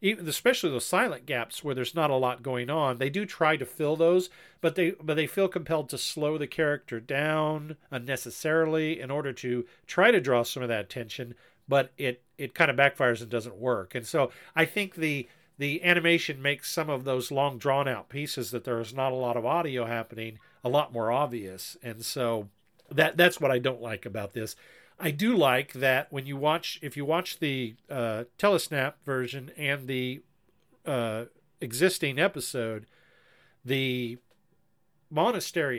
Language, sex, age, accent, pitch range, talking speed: English, male, 50-69, American, 120-155 Hz, 180 wpm